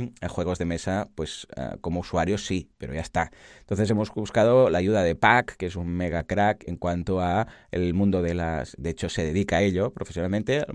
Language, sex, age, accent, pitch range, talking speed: Spanish, male, 30-49, Spanish, 90-140 Hz, 210 wpm